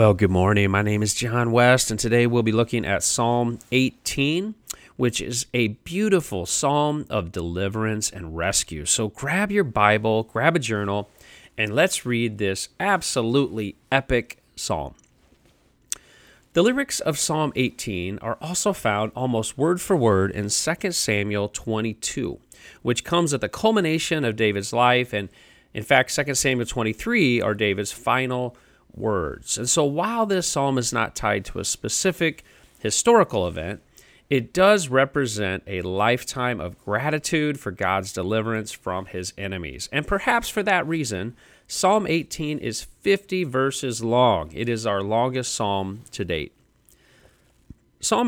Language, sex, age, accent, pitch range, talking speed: English, male, 40-59, American, 105-150 Hz, 145 wpm